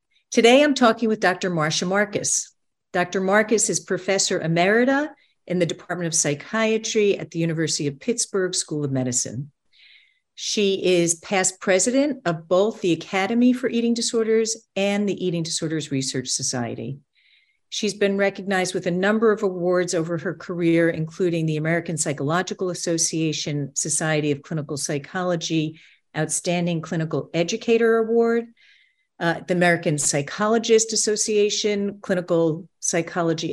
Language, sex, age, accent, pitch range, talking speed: English, female, 50-69, American, 165-220 Hz, 130 wpm